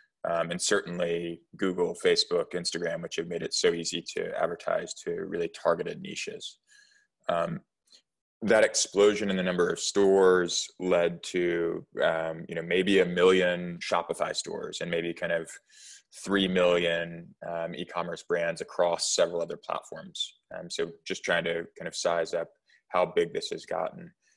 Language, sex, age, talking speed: English, male, 20-39, 150 wpm